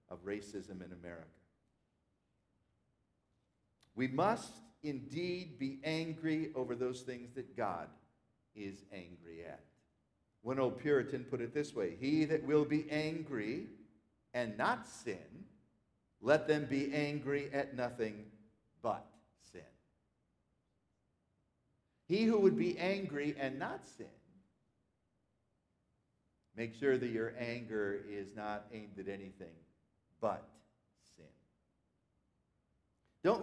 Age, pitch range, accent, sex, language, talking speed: 50-69, 115-185 Hz, American, male, English, 110 wpm